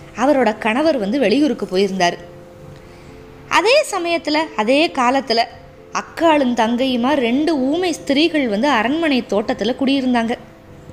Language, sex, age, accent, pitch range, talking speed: Tamil, female, 20-39, native, 235-300 Hz, 100 wpm